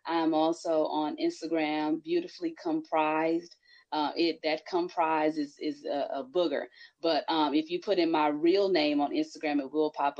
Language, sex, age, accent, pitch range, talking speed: English, female, 30-49, American, 150-195 Hz, 170 wpm